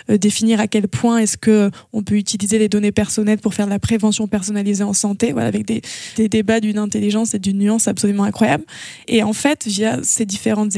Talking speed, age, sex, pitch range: 210 wpm, 20-39, female, 210-245 Hz